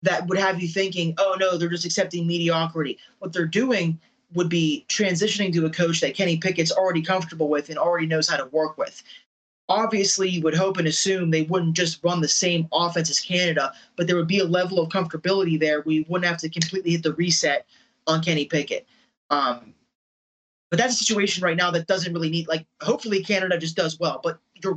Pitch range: 160-190 Hz